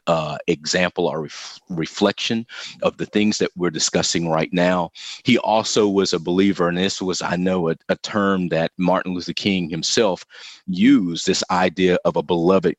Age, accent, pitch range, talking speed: 40-59, American, 85-100 Hz, 175 wpm